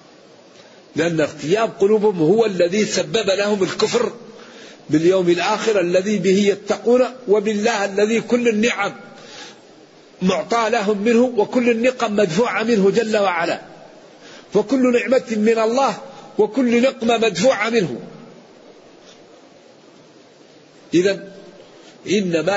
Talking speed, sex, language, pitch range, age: 95 wpm, male, Arabic, 160-215 Hz, 50-69